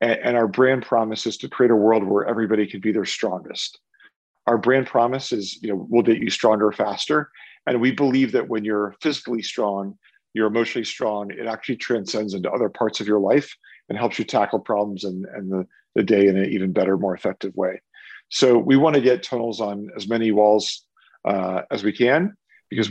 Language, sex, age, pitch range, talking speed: English, male, 40-59, 100-120 Hz, 200 wpm